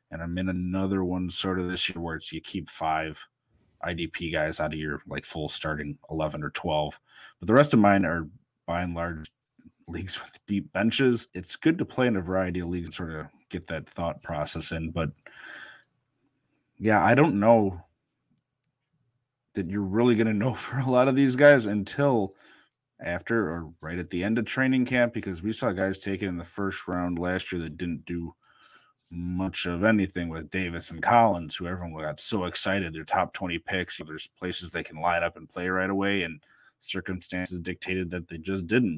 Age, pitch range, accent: 30-49, 85-110 Hz, American